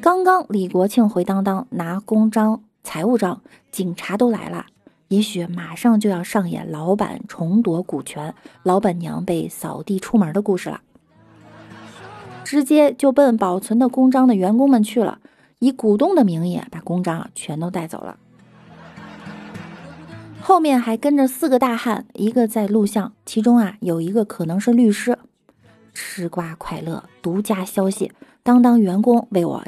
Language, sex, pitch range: Chinese, female, 180-250 Hz